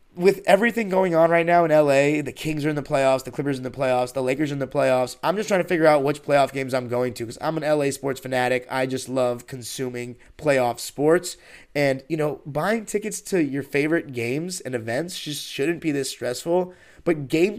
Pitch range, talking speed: 125-155 Hz, 230 wpm